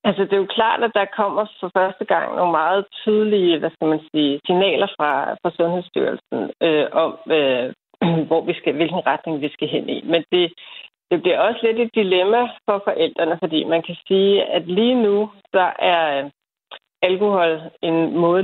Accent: native